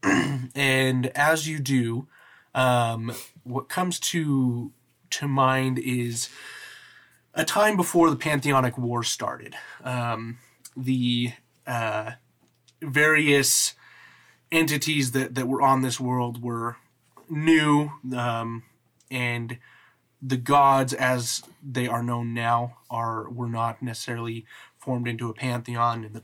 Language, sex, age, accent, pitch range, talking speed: English, male, 30-49, American, 120-135 Hz, 115 wpm